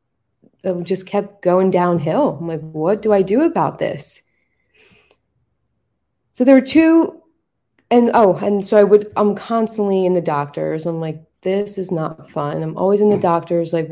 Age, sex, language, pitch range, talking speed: 20-39, female, English, 165-205 Hz, 175 wpm